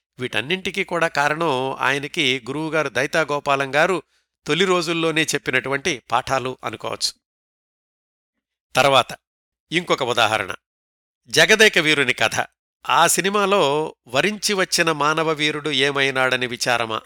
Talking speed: 90 wpm